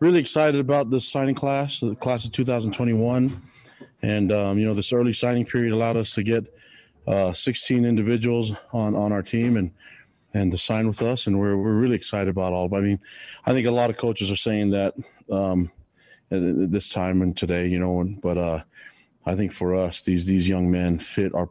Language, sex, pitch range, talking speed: English, male, 85-110 Hz, 205 wpm